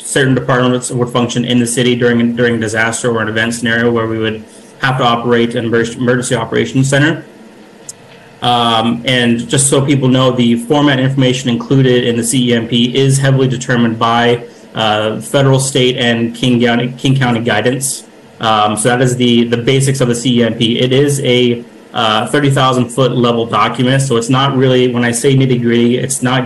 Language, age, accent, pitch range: English, 30-49, American, 120-130 Hz